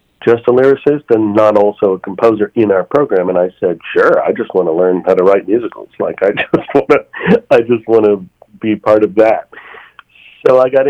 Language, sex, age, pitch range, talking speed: English, male, 40-59, 100-120 Hz, 220 wpm